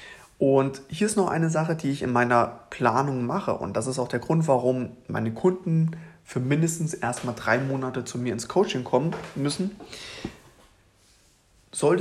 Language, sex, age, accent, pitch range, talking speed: German, male, 20-39, German, 115-155 Hz, 165 wpm